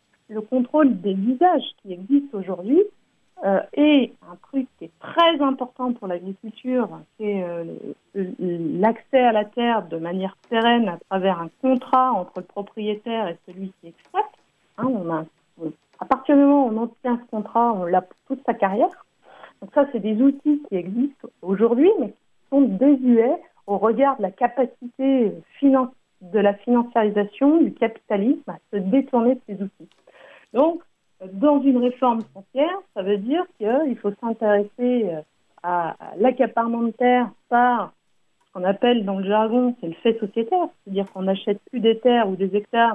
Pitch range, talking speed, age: 195-255 Hz, 165 wpm, 50-69